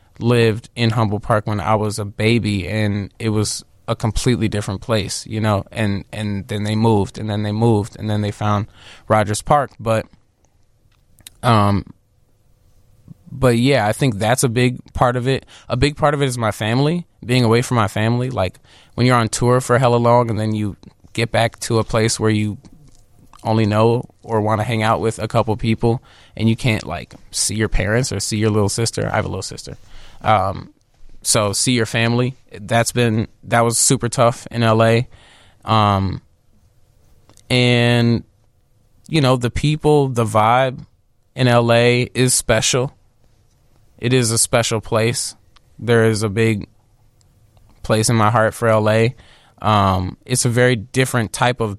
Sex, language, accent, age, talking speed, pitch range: male, English, American, 20-39, 175 wpm, 105-120 Hz